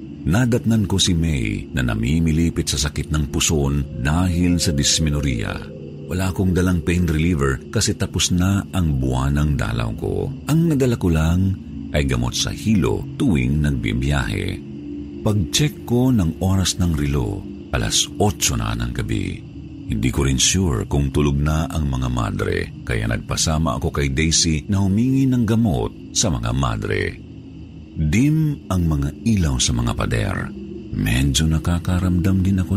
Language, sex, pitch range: Filipino, male, 75-100 Hz